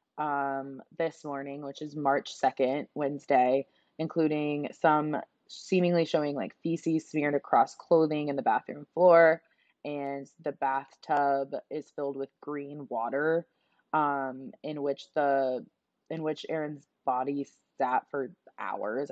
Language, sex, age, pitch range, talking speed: English, female, 20-39, 135-160 Hz, 125 wpm